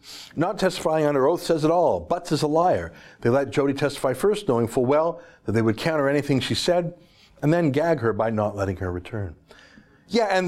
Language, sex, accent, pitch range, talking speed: English, male, American, 115-165 Hz, 210 wpm